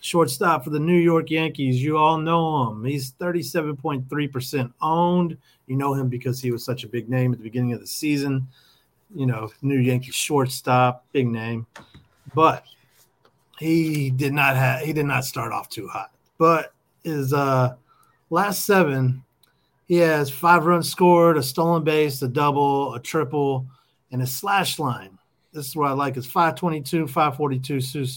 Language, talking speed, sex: English, 170 wpm, male